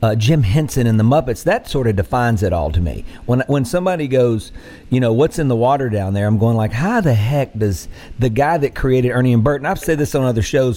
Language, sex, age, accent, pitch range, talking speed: English, male, 50-69, American, 105-135 Hz, 260 wpm